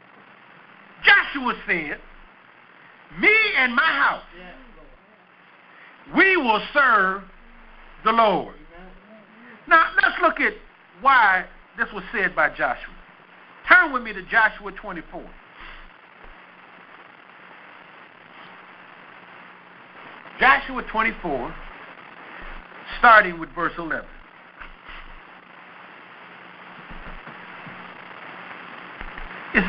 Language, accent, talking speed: English, American, 70 wpm